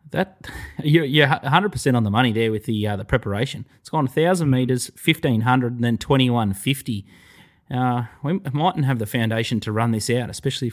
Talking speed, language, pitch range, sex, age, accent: 185 wpm, English, 115-135 Hz, male, 20-39, Australian